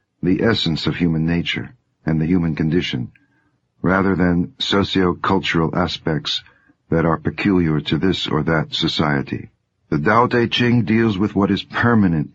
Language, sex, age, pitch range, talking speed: English, male, 60-79, 80-100 Hz, 145 wpm